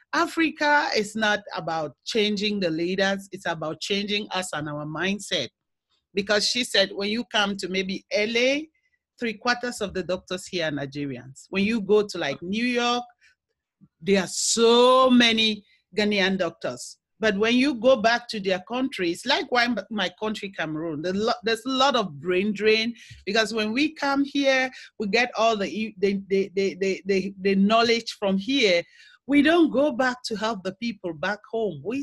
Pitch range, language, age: 190-245 Hz, English, 40-59